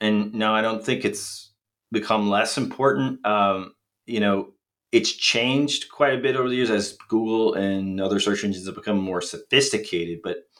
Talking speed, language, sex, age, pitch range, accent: 175 wpm, English, male, 30-49, 100-125 Hz, American